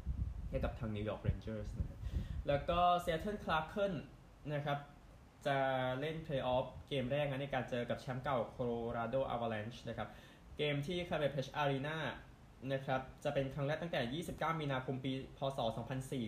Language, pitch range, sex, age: Thai, 115-140 Hz, male, 20-39